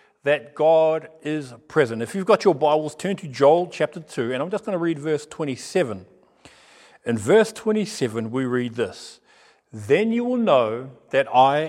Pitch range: 120-160 Hz